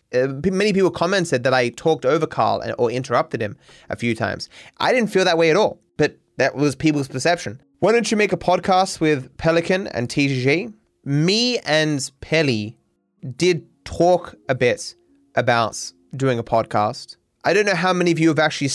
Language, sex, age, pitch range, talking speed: English, male, 20-39, 125-165 Hz, 190 wpm